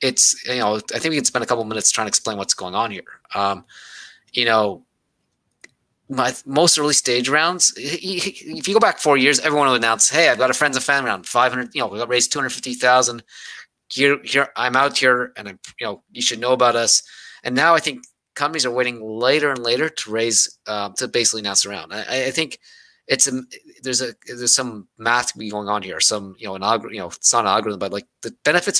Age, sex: 20-39, male